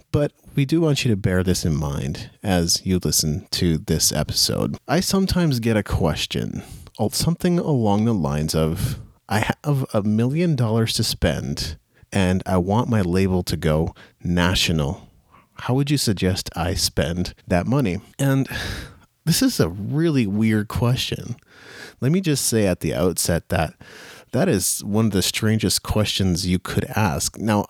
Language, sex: English, male